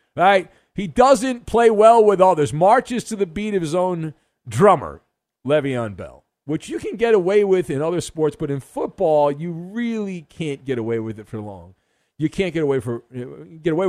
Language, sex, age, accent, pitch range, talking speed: English, male, 50-69, American, 140-215 Hz, 205 wpm